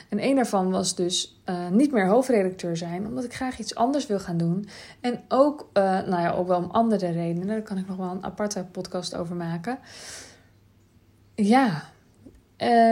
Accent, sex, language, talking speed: Dutch, female, Dutch, 180 wpm